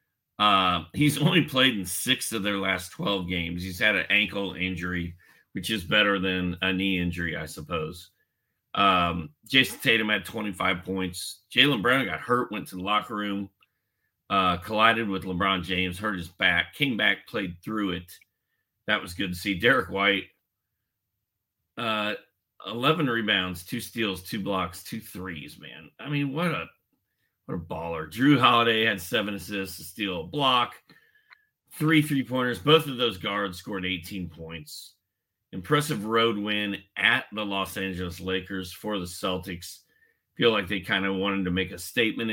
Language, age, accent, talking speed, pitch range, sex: English, 40-59, American, 165 wpm, 90-115 Hz, male